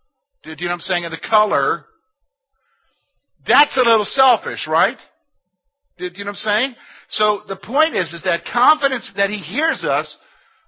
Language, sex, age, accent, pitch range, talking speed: English, male, 50-69, American, 155-260 Hz, 175 wpm